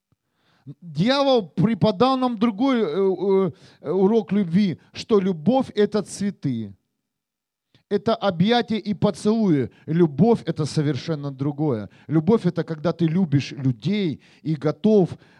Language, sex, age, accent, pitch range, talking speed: Russian, male, 40-59, native, 160-220 Hz, 100 wpm